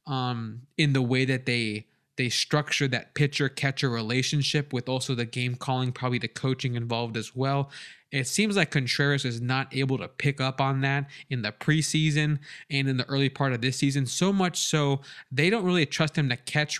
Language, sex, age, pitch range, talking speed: English, male, 20-39, 125-145 Hz, 195 wpm